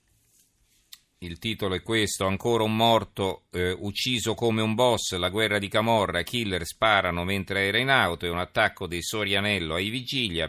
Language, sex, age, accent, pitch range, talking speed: Italian, male, 40-59, native, 90-115 Hz, 165 wpm